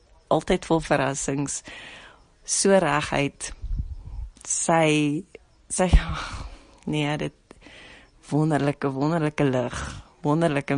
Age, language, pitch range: 30-49, English, 140-175 Hz